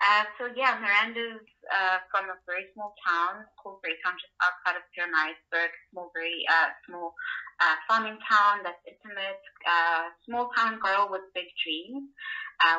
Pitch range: 160-225 Hz